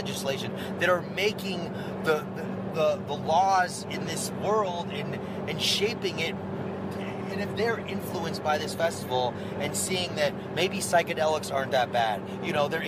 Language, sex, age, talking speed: English, male, 30-49, 160 wpm